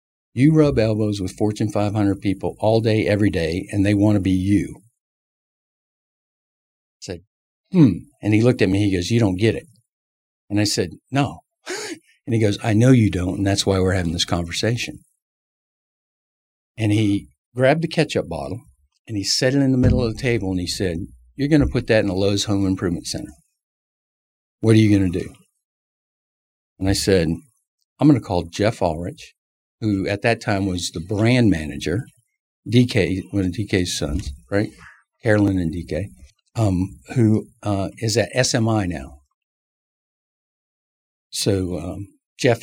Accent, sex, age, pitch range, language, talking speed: American, male, 50-69, 90-115 Hz, English, 170 wpm